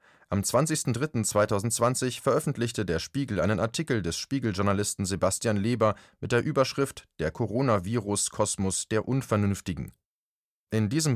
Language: German